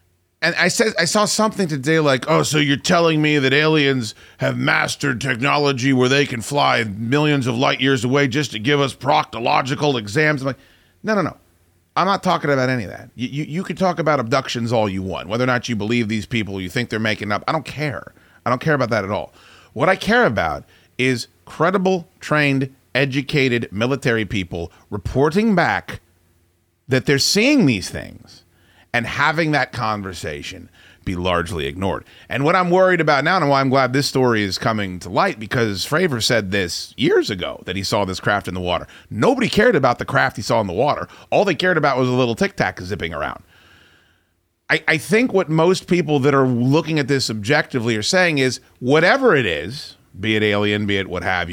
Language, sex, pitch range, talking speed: English, male, 105-150 Hz, 205 wpm